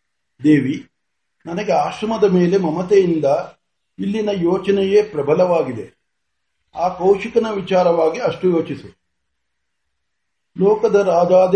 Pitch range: 155-200 Hz